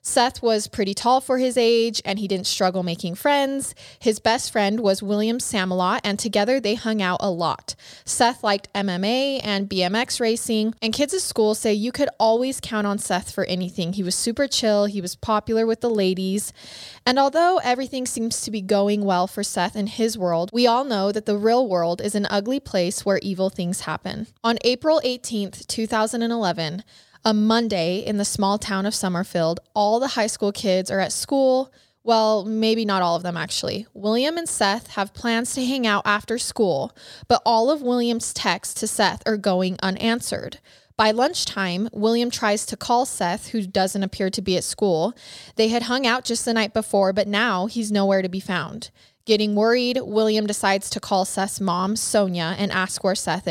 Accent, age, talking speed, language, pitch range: American, 20-39, 195 wpm, English, 195-235 Hz